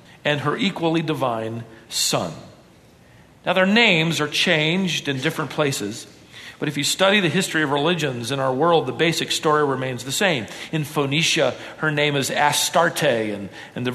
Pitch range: 145-195 Hz